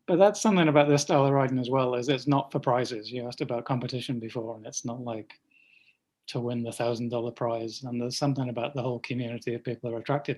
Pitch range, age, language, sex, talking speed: 115-130 Hz, 20-39, English, male, 235 wpm